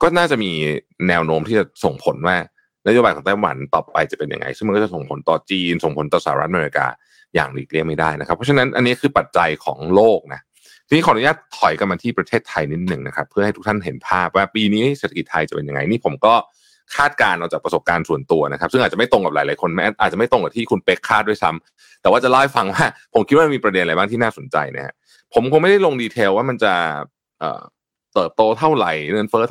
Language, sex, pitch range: Thai, male, 85-130 Hz